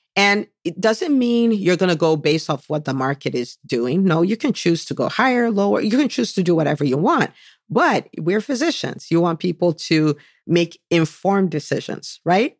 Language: English